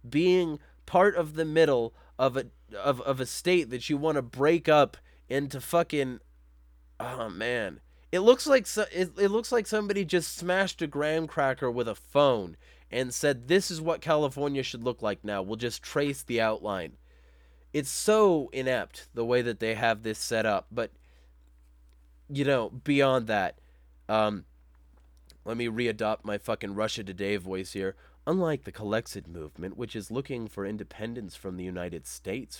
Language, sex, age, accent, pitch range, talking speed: English, male, 20-39, American, 95-140 Hz, 170 wpm